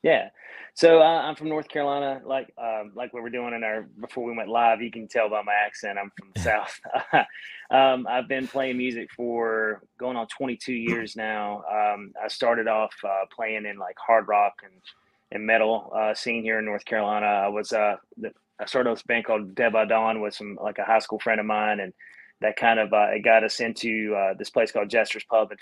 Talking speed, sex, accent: 225 wpm, male, American